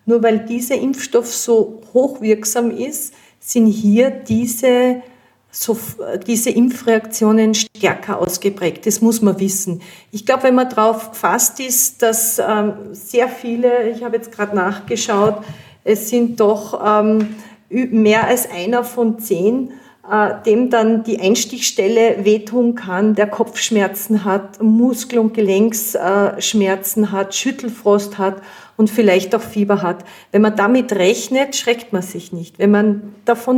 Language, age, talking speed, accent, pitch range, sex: German, 40-59, 140 wpm, Swiss, 205-245 Hz, female